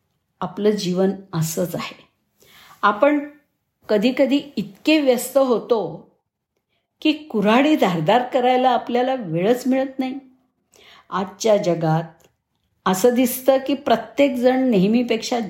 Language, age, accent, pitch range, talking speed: Marathi, 50-69, native, 170-250 Hz, 95 wpm